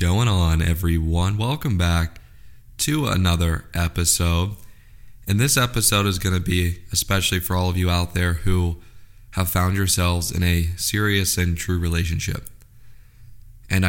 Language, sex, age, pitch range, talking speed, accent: English, male, 20-39, 90-105 Hz, 145 wpm, American